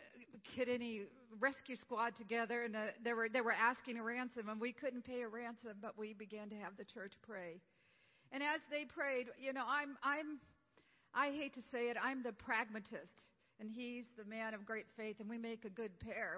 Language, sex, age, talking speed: English, female, 50-69, 210 wpm